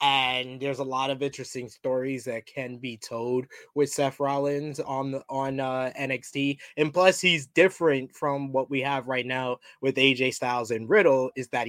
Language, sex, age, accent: English, male, 20-39, American